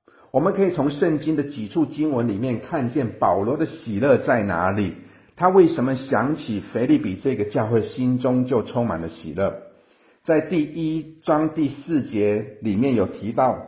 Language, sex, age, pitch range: Chinese, male, 50-69, 115-155 Hz